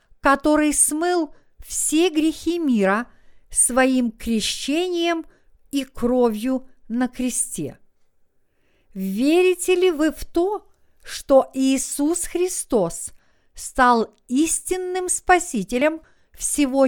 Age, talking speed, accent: 50-69, 80 wpm, native